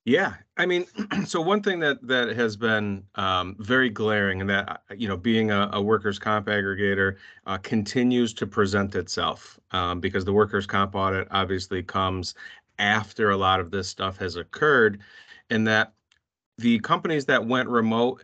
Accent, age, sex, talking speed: American, 30-49, male, 170 wpm